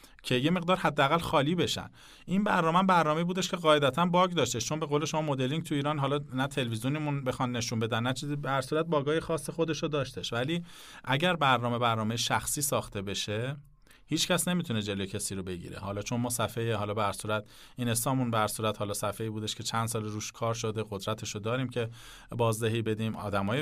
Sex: male